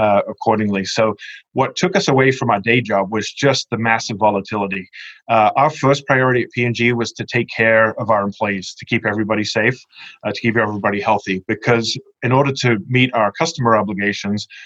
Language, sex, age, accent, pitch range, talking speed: English, male, 30-49, American, 105-120 Hz, 195 wpm